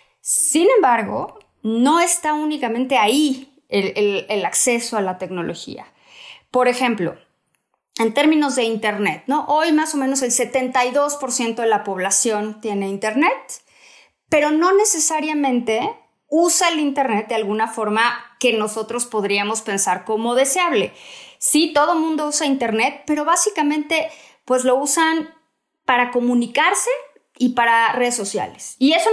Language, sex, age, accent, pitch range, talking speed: English, female, 30-49, Mexican, 220-310 Hz, 125 wpm